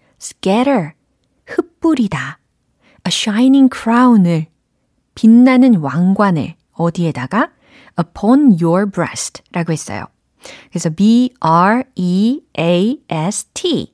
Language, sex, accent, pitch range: Korean, female, native, 170-235 Hz